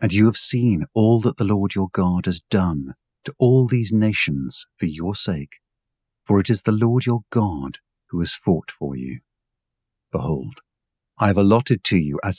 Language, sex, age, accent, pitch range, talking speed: English, male, 50-69, British, 80-110 Hz, 185 wpm